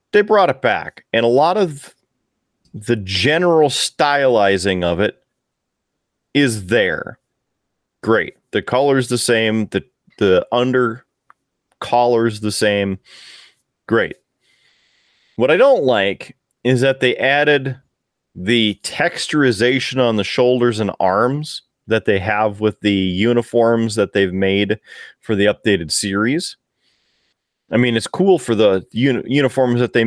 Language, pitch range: English, 105-130 Hz